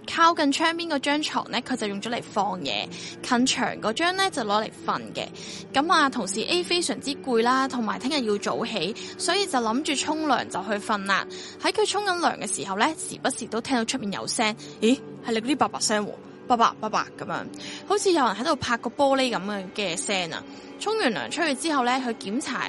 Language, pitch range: Chinese, 225-310 Hz